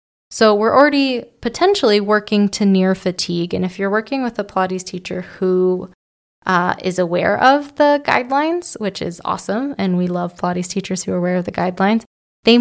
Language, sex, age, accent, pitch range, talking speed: English, female, 20-39, American, 190-245 Hz, 180 wpm